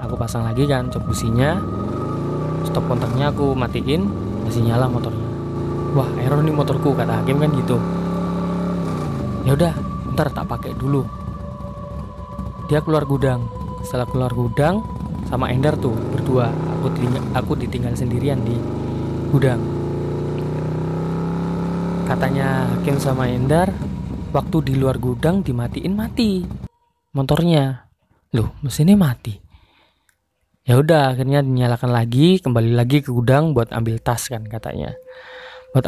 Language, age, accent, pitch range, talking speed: Indonesian, 20-39, native, 120-165 Hz, 115 wpm